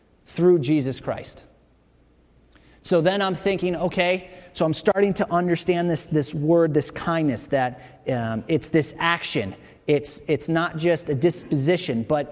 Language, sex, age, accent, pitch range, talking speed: English, male, 30-49, American, 145-190 Hz, 145 wpm